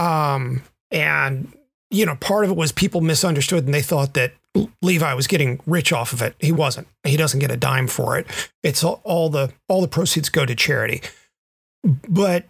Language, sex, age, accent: English, male, 30-49, American